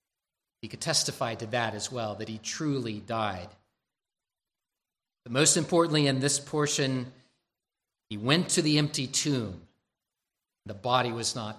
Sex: male